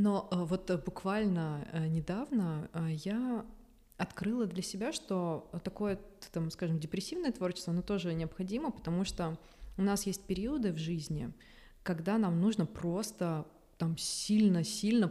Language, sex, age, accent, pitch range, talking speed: Russian, female, 20-39, native, 165-195 Hz, 120 wpm